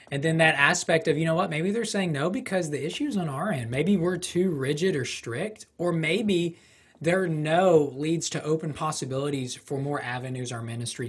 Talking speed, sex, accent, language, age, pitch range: 205 wpm, male, American, English, 20-39, 140-165 Hz